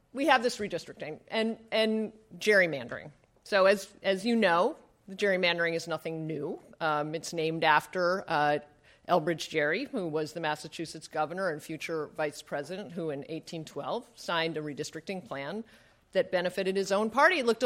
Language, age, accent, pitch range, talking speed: English, 50-69, American, 155-215 Hz, 160 wpm